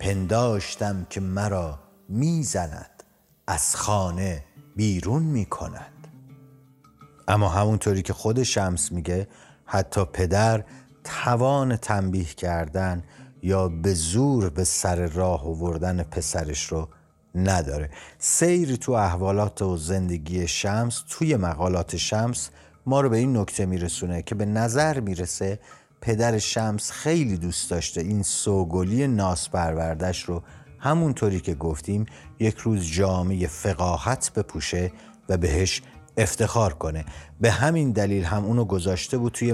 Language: Persian